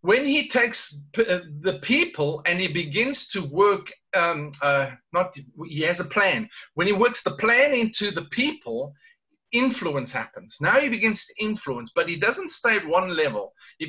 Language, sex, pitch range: English, male, 145-225 Hz